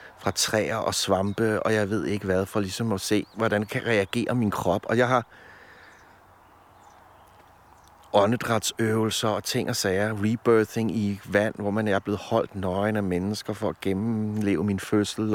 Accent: native